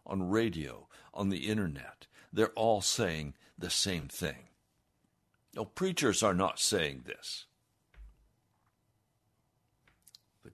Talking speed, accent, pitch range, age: 100 wpm, American, 100-115 Hz, 60-79